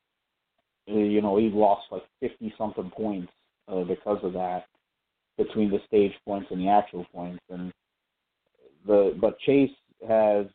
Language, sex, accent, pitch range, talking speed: English, male, American, 95-110 Hz, 135 wpm